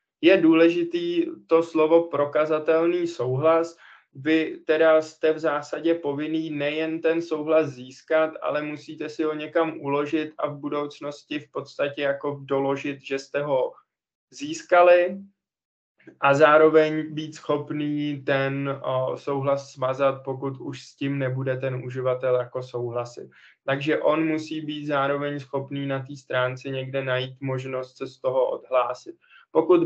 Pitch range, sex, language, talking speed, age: 135-160 Hz, male, Czech, 135 wpm, 20-39